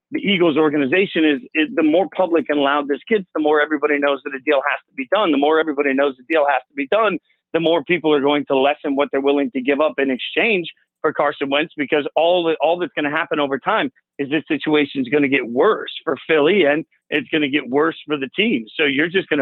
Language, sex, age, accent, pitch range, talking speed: English, male, 40-59, American, 140-160 Hz, 260 wpm